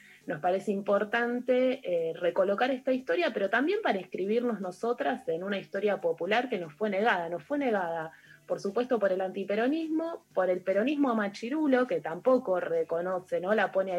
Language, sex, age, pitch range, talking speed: Spanish, female, 20-39, 180-245 Hz, 165 wpm